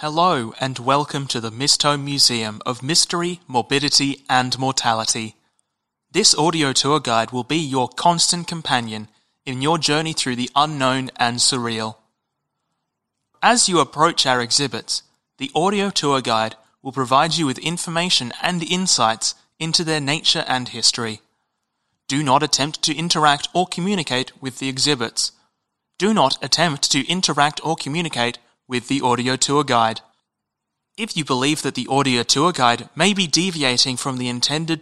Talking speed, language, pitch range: 150 wpm, English, 125-160 Hz